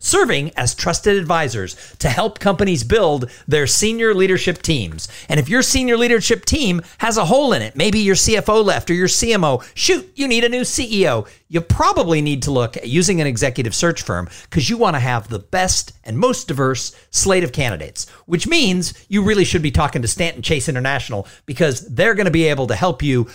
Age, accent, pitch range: 50-69, American, 125-205 Hz